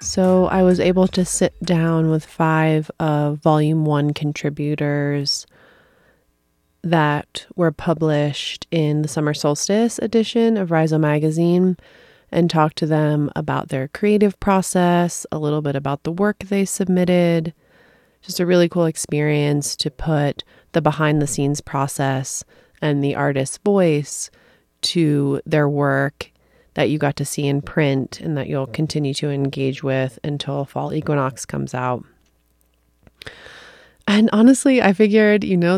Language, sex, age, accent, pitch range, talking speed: English, female, 30-49, American, 145-185 Hz, 140 wpm